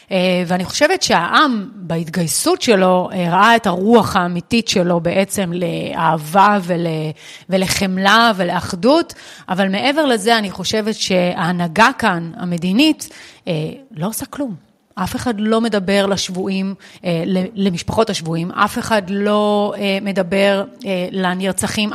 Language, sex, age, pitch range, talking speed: Hebrew, female, 30-49, 185-225 Hz, 105 wpm